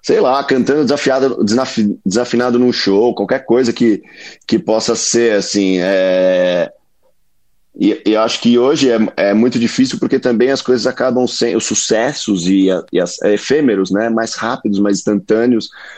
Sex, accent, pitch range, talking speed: male, Brazilian, 105-135 Hz, 160 wpm